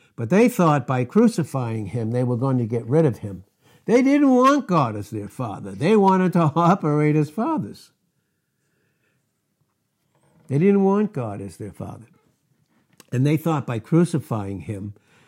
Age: 60-79